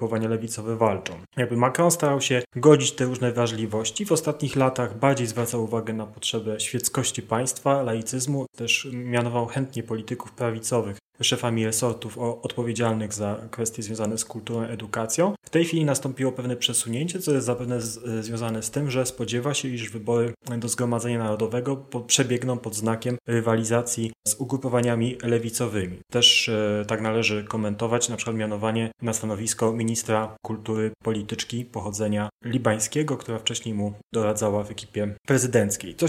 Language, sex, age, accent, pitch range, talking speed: Polish, male, 30-49, native, 110-130 Hz, 140 wpm